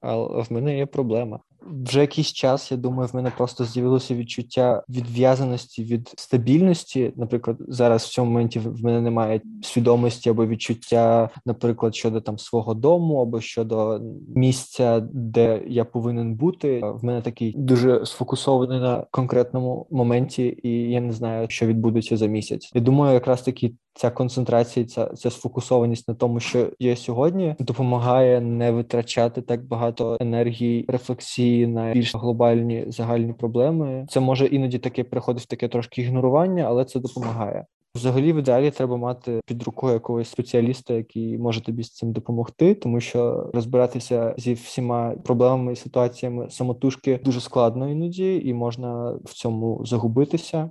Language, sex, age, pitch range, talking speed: Ukrainian, male, 20-39, 115-130 Hz, 150 wpm